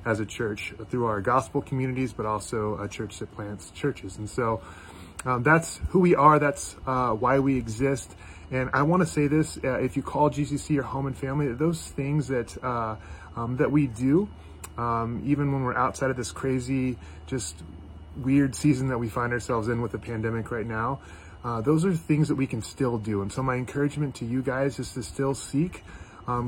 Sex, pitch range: male, 105-135 Hz